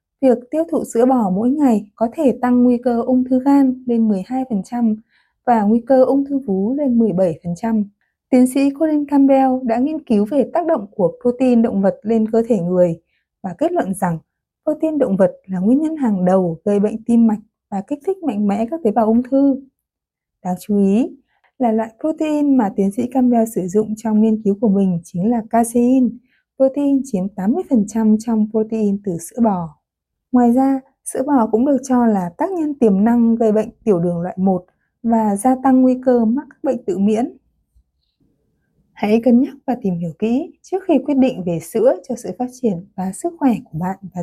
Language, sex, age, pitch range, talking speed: Vietnamese, female, 20-39, 200-255 Hz, 200 wpm